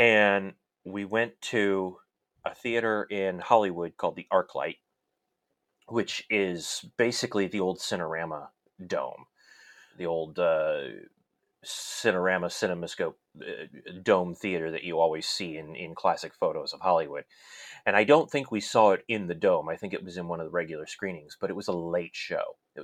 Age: 30-49